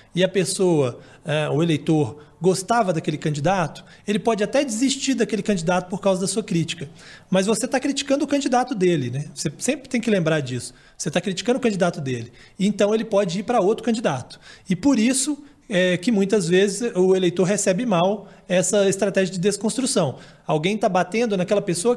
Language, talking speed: Portuguese, 180 wpm